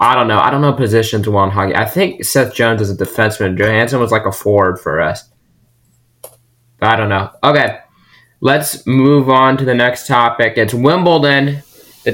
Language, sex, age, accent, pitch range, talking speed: English, male, 20-39, American, 115-140 Hz, 190 wpm